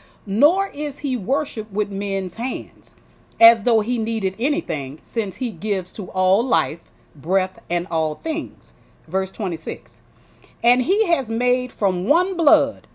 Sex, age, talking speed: female, 40-59, 145 wpm